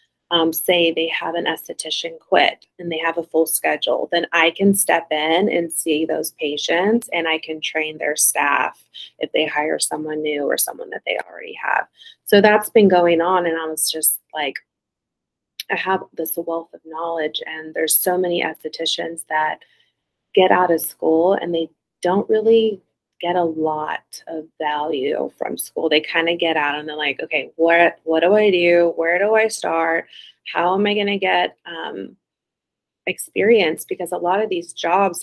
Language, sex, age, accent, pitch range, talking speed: English, female, 20-39, American, 160-185 Hz, 180 wpm